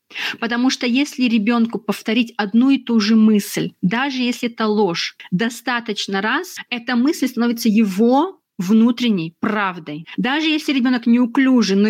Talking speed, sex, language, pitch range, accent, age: 135 wpm, female, Russian, 200-245 Hz, native, 30-49